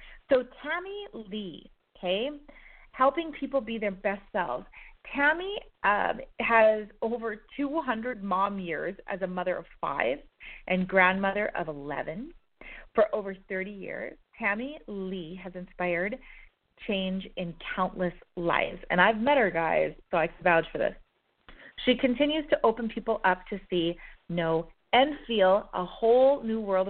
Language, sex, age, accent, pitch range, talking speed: English, female, 30-49, American, 185-260 Hz, 140 wpm